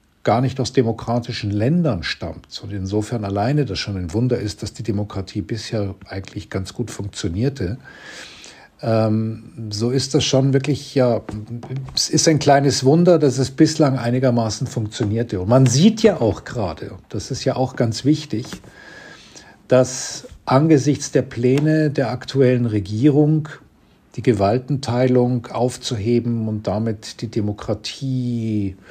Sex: male